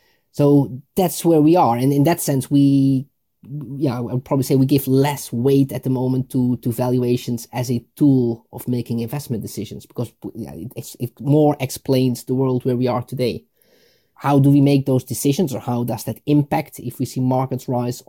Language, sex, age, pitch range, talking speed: English, male, 20-39, 120-145 Hz, 195 wpm